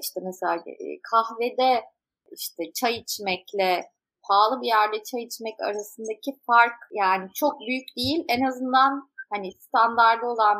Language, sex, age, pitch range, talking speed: Turkish, female, 30-49, 190-240 Hz, 125 wpm